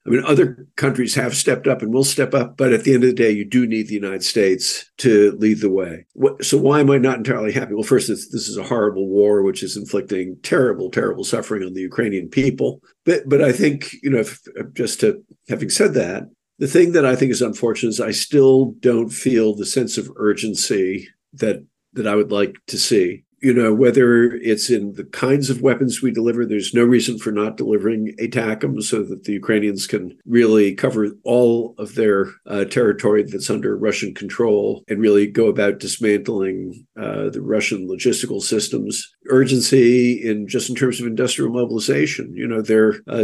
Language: English